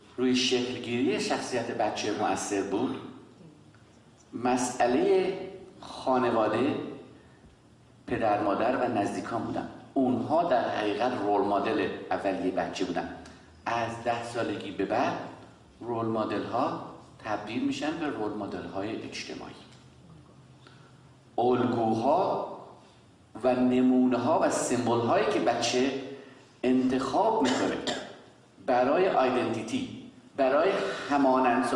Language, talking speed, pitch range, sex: Persian, 95 wpm, 120-195 Hz, male